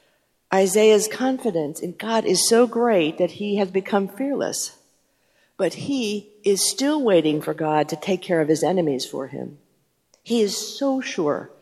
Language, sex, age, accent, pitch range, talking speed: English, female, 50-69, American, 165-200 Hz, 160 wpm